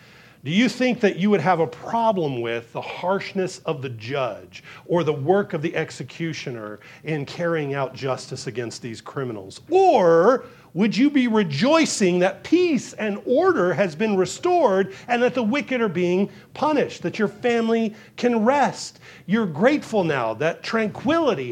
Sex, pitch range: male, 145-215 Hz